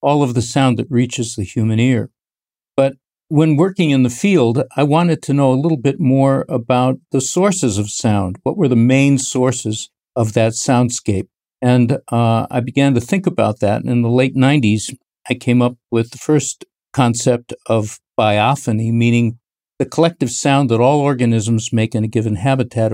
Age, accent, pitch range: 50-69, American, 115-140 Hz